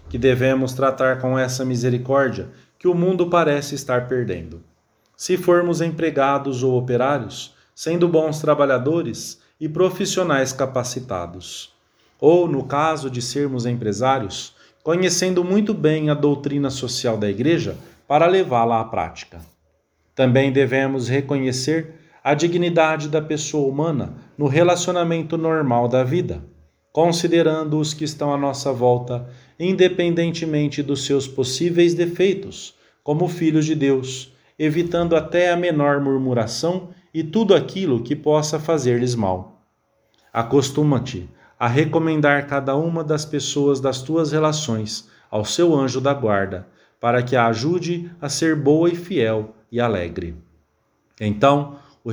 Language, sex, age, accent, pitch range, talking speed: English, male, 40-59, Brazilian, 125-160 Hz, 125 wpm